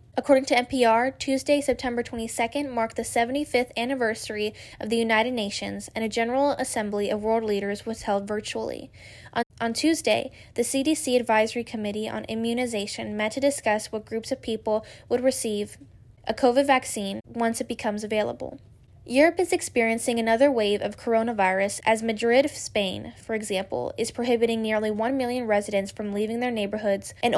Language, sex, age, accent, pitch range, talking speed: English, female, 10-29, American, 210-245 Hz, 160 wpm